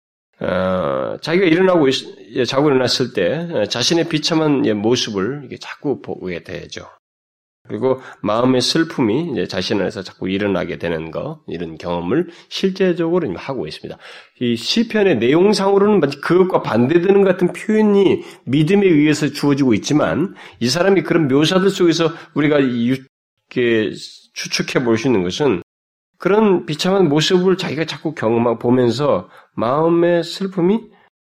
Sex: male